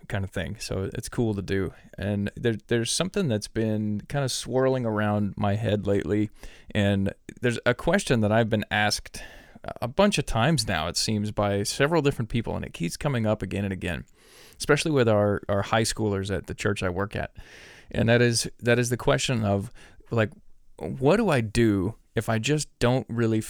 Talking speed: 200 wpm